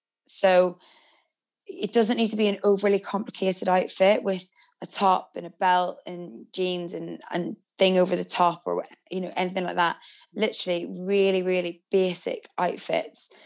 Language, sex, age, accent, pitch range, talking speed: English, female, 20-39, British, 175-200 Hz, 155 wpm